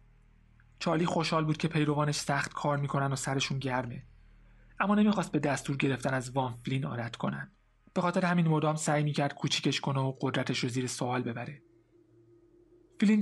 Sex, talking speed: male, 160 wpm